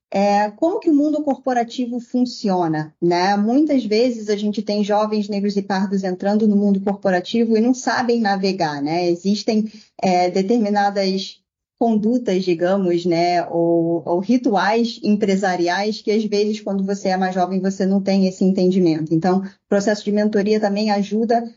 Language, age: Portuguese, 10-29